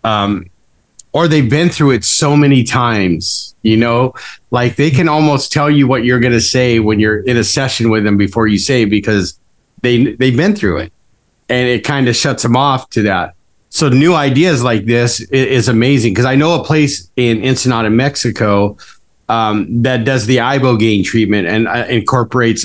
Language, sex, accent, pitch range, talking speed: English, male, American, 105-130 Hz, 190 wpm